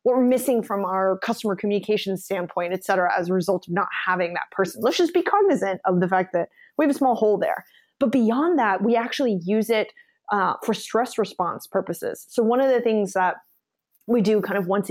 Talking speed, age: 220 wpm, 20-39